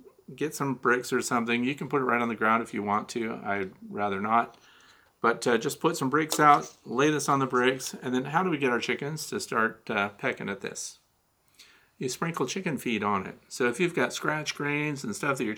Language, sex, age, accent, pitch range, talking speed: English, male, 40-59, American, 120-155 Hz, 240 wpm